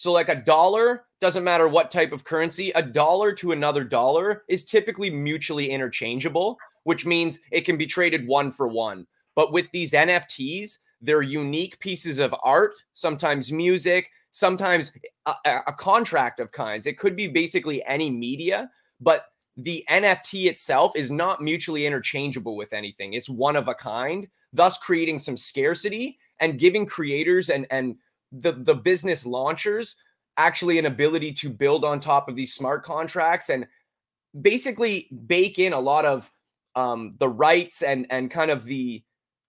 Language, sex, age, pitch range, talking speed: English, male, 20-39, 140-180 Hz, 160 wpm